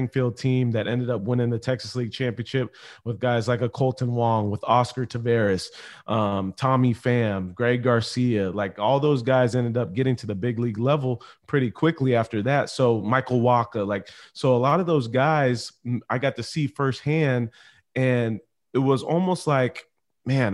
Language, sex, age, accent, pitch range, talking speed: English, male, 30-49, American, 120-140 Hz, 180 wpm